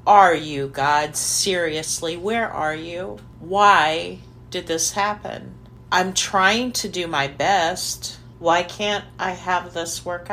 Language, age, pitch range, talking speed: English, 50-69, 145-210 Hz, 135 wpm